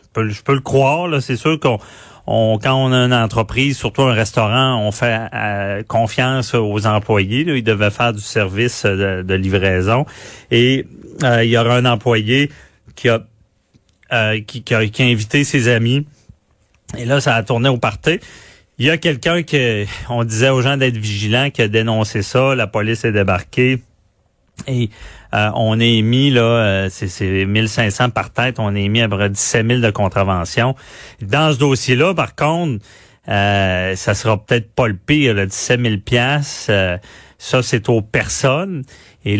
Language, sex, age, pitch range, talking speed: French, male, 40-59, 105-130 Hz, 185 wpm